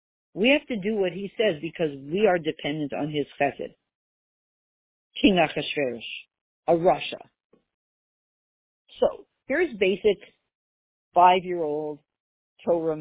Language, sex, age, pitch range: English, female, 50-69, 190-280 Hz